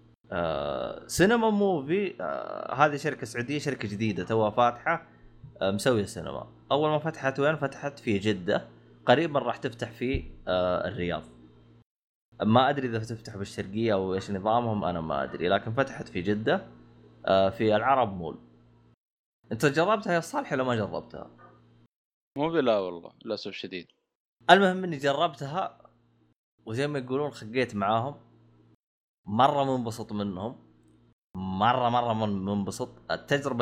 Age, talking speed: 20-39, 125 wpm